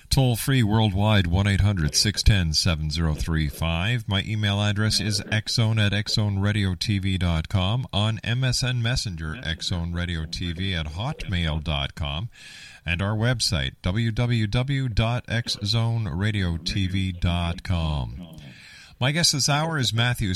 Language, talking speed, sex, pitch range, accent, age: English, 75 wpm, male, 90-115 Hz, American, 50-69